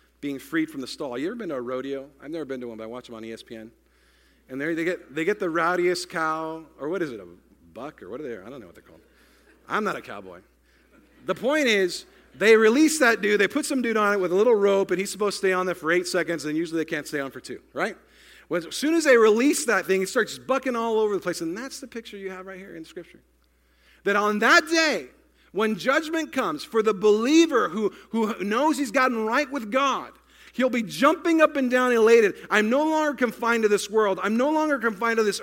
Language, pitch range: English, 150-245 Hz